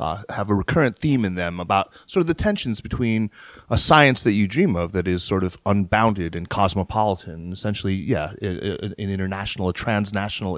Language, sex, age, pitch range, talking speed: English, male, 30-49, 95-110 Hz, 180 wpm